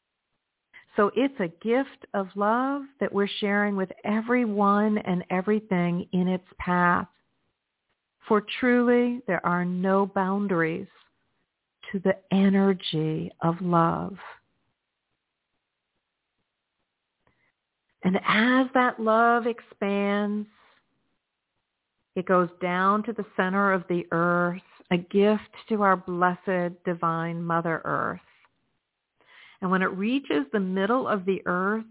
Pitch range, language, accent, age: 185-220 Hz, English, American, 50-69